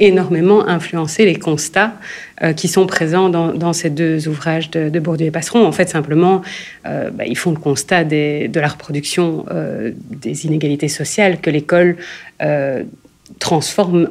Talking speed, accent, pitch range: 155 wpm, French, 150-180 Hz